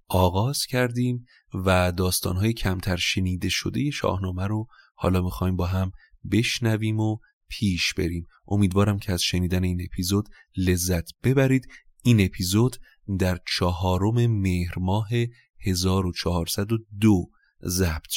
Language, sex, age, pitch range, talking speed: Persian, male, 30-49, 90-110 Hz, 110 wpm